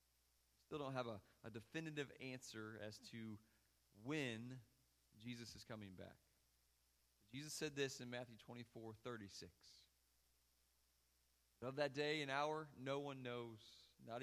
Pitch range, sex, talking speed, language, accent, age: 110-145 Hz, male, 135 wpm, English, American, 30-49